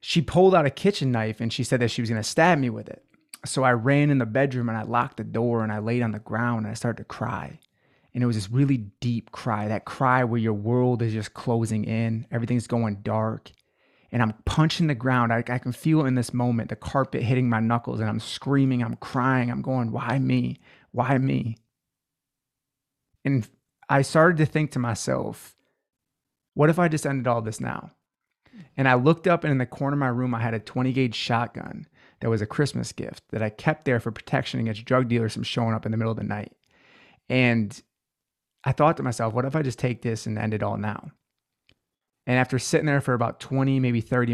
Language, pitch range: English, 115-135 Hz